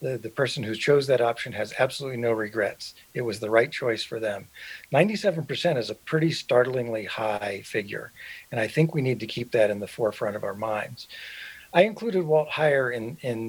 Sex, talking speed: male, 200 wpm